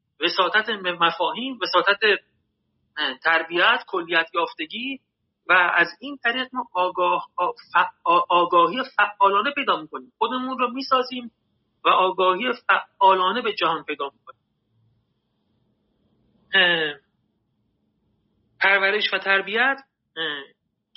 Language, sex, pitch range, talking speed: Persian, male, 165-220 Hz, 80 wpm